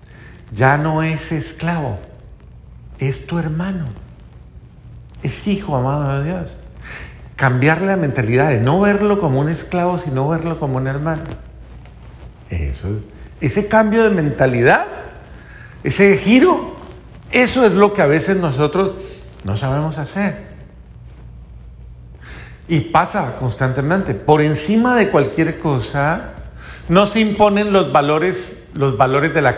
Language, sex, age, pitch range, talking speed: Spanish, male, 50-69, 130-180 Hz, 120 wpm